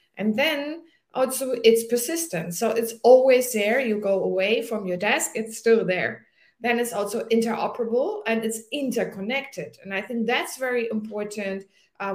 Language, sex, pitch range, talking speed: English, female, 195-240 Hz, 160 wpm